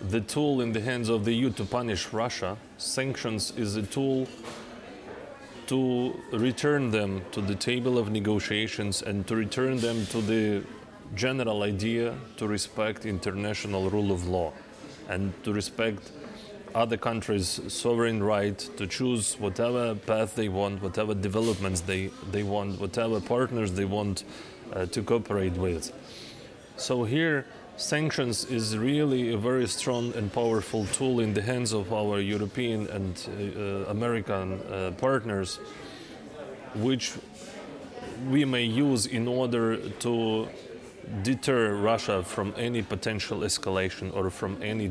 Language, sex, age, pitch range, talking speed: Danish, male, 20-39, 100-120 Hz, 135 wpm